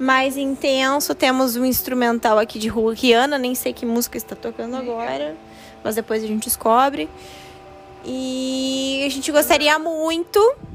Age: 10-29